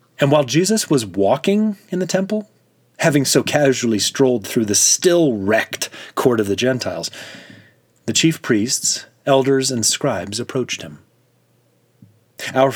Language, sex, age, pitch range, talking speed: English, male, 30-49, 105-145 Hz, 130 wpm